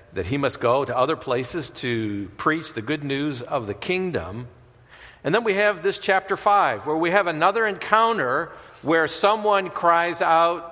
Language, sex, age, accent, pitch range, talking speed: English, male, 50-69, American, 125-175 Hz, 175 wpm